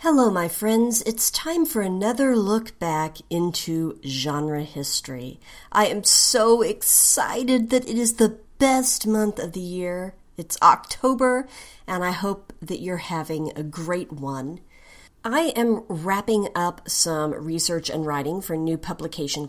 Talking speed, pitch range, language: 150 wpm, 160-225 Hz, English